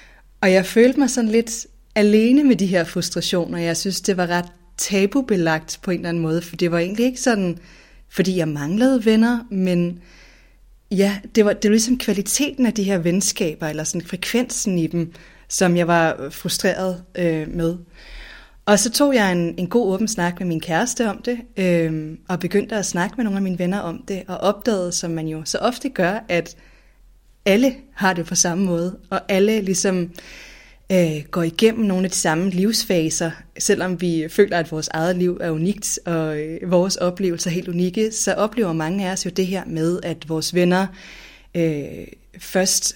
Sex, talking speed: female, 185 wpm